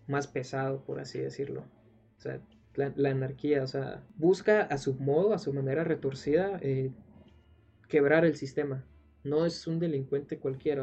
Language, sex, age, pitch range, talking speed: Spanish, male, 20-39, 135-150 Hz, 160 wpm